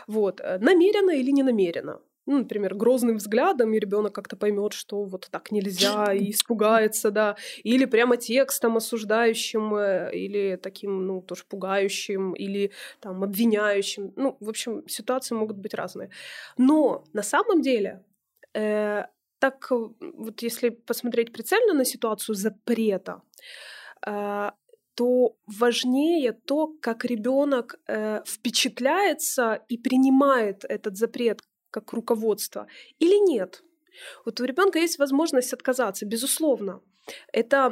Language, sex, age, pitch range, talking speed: Ukrainian, female, 20-39, 210-265 Hz, 120 wpm